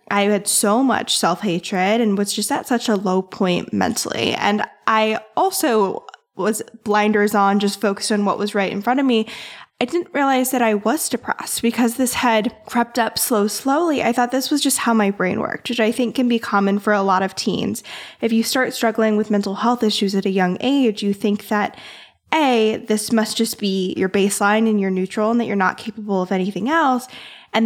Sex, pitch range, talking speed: female, 200-240 Hz, 215 wpm